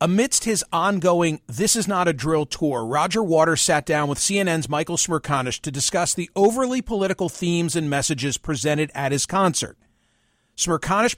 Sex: male